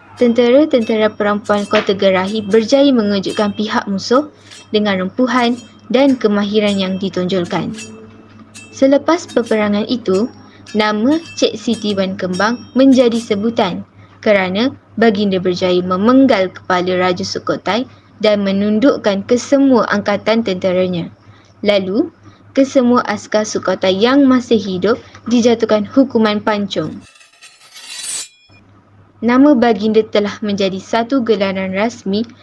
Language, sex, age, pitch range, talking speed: Malay, female, 10-29, 190-245 Hz, 100 wpm